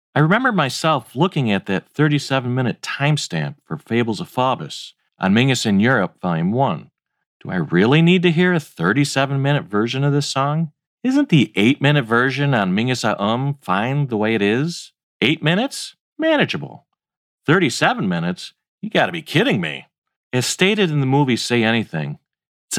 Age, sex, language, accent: 40-59, male, English, American